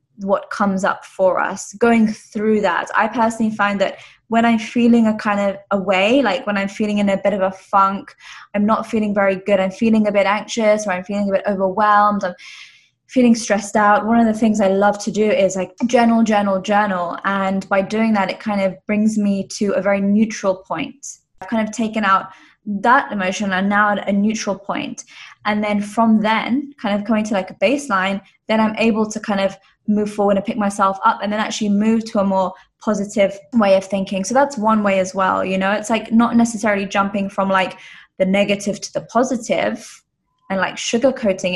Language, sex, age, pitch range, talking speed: English, female, 20-39, 195-220 Hz, 215 wpm